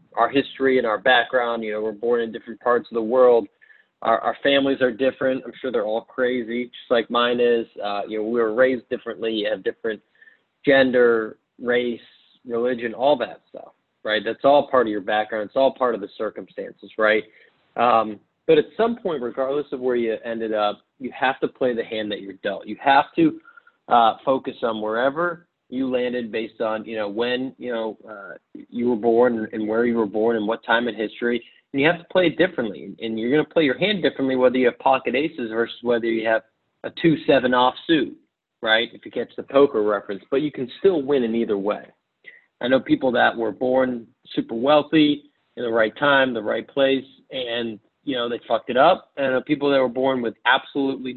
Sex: male